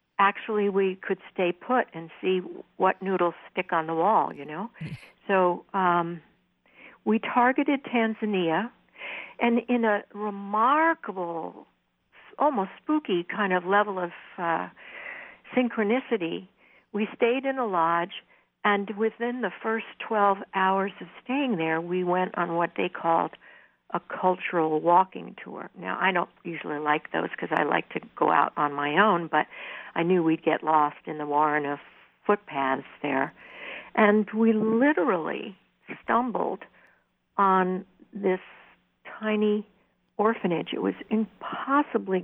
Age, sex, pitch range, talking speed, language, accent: 60-79, female, 175-230 Hz, 135 wpm, English, American